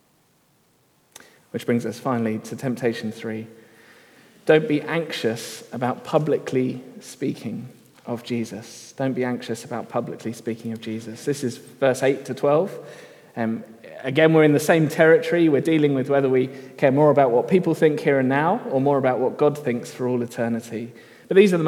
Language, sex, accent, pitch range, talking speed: English, male, British, 120-155 Hz, 175 wpm